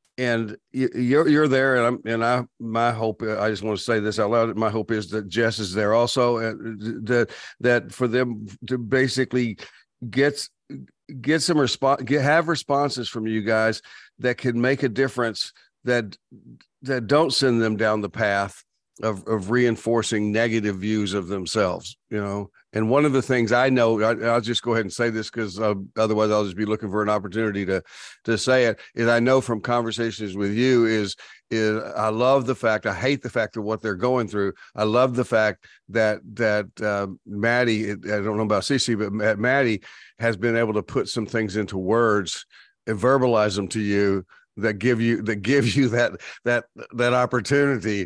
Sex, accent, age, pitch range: male, American, 50-69, 105-125 Hz